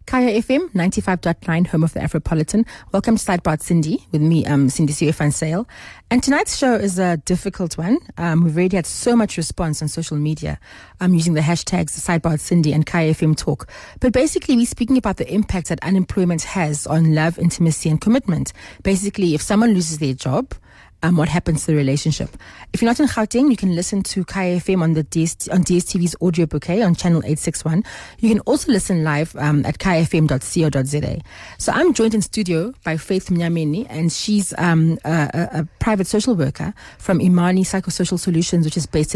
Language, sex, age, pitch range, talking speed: English, female, 30-49, 155-195 Hz, 190 wpm